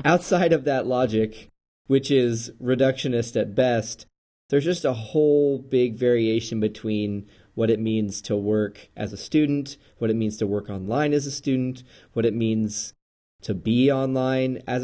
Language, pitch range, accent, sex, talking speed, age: English, 105-130 Hz, American, male, 160 wpm, 30-49